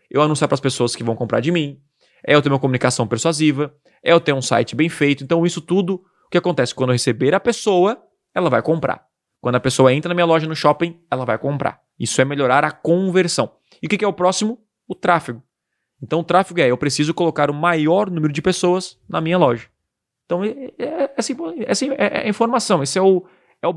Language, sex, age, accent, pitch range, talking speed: Portuguese, male, 20-39, Brazilian, 135-180 Hz, 235 wpm